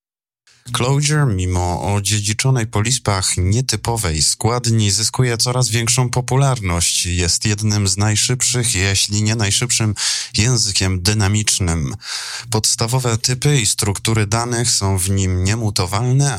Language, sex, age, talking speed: Polish, male, 20-39, 105 wpm